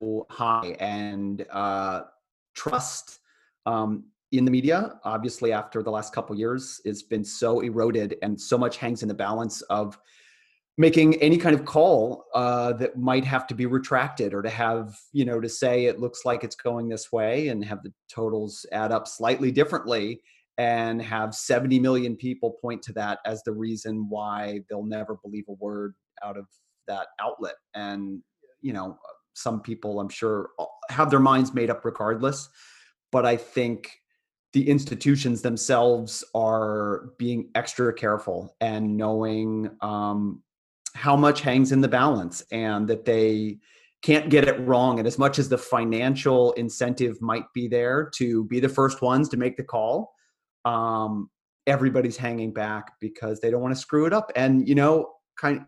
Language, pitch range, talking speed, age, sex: English, 110-130 Hz, 165 wpm, 30-49, male